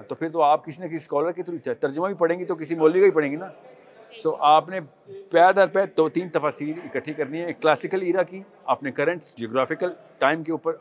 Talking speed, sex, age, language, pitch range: 250 wpm, male, 40-59, Urdu, 145-190 Hz